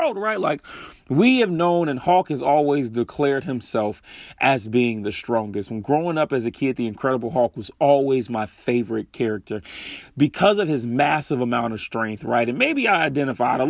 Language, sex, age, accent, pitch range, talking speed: English, male, 30-49, American, 120-170 Hz, 185 wpm